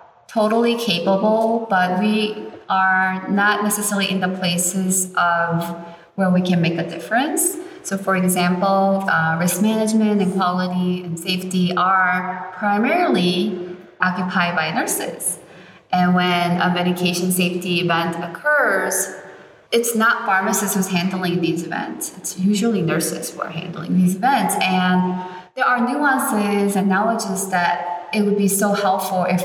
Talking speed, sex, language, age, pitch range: 135 wpm, female, English, 20-39, 175-200 Hz